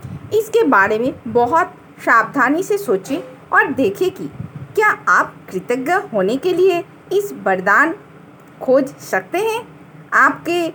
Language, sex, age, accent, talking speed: Hindi, female, 50-69, native, 125 wpm